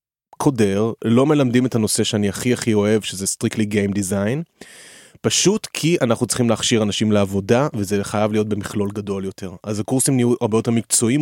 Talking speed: 170 wpm